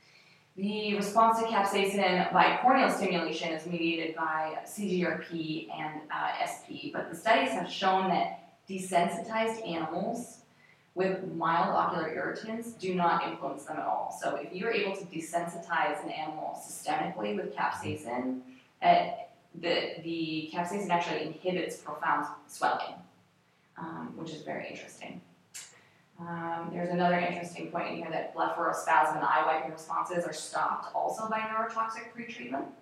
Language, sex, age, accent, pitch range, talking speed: English, female, 20-39, American, 160-190 Hz, 135 wpm